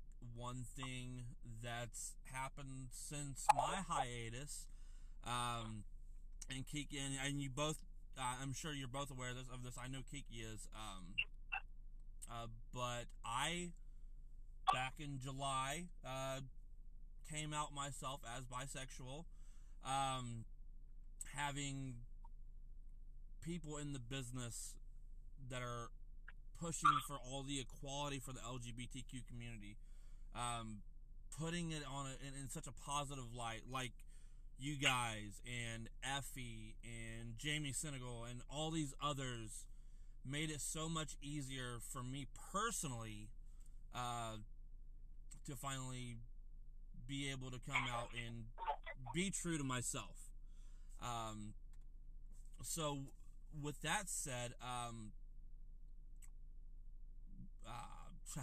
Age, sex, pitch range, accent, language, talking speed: 20-39, male, 120-140 Hz, American, English, 110 wpm